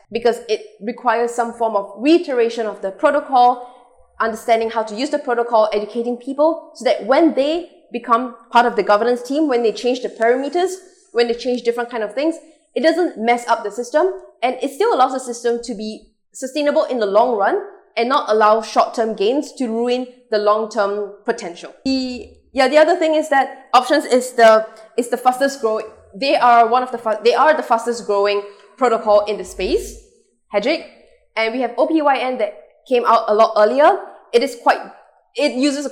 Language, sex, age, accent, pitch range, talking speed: English, female, 20-39, Malaysian, 220-280 Hz, 190 wpm